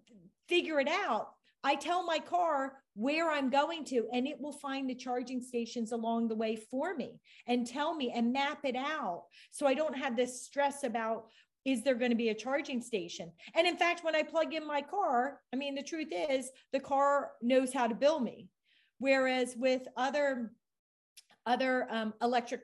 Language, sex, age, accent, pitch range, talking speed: English, female, 40-59, American, 235-285 Hz, 190 wpm